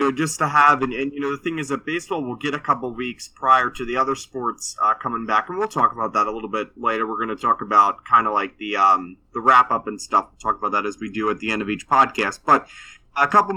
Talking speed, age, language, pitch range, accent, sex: 285 wpm, 20-39, English, 120-150 Hz, American, male